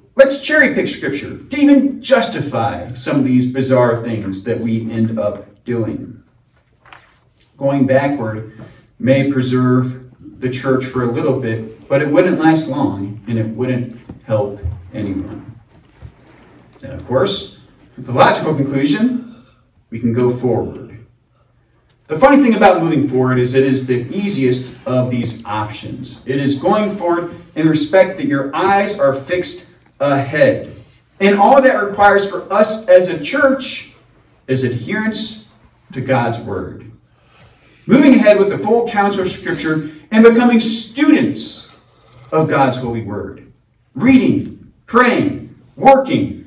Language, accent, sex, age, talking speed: English, American, male, 40-59, 135 wpm